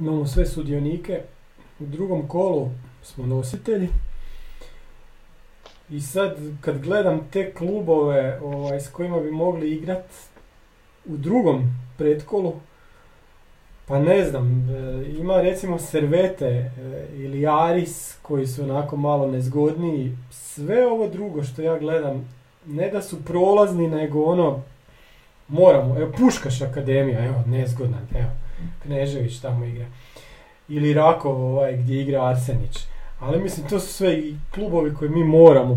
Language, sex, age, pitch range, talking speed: Croatian, male, 40-59, 130-170 Hz, 125 wpm